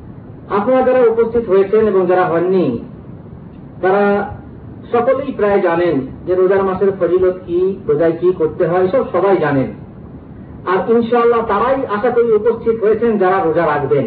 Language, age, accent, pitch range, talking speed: Bengali, 50-69, native, 180-240 Hz, 45 wpm